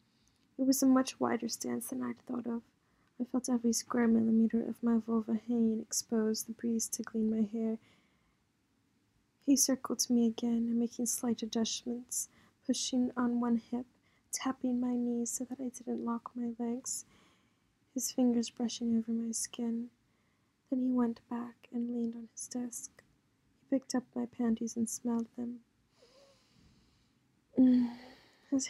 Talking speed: 150 wpm